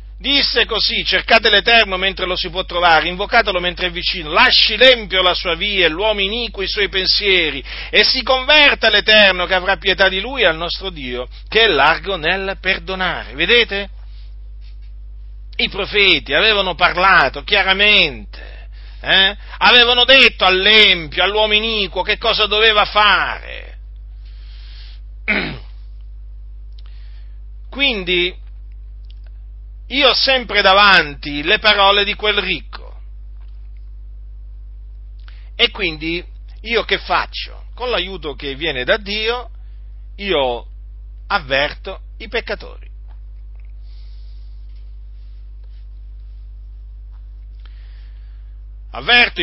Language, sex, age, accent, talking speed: Italian, male, 50-69, native, 100 wpm